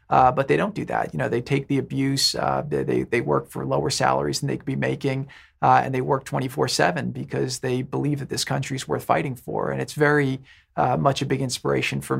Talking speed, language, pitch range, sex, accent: 235 wpm, English, 115-140 Hz, male, American